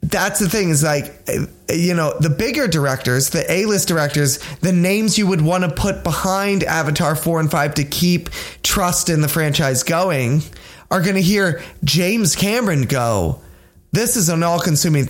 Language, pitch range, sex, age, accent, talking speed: English, 155-200 Hz, male, 20-39, American, 175 wpm